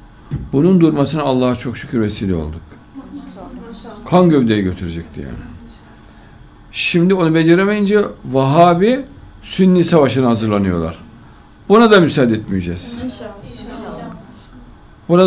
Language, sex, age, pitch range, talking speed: Turkish, male, 60-79, 105-165 Hz, 90 wpm